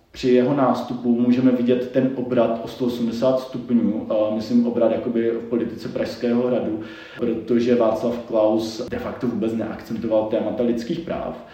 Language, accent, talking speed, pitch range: Czech, native, 145 wpm, 115-130 Hz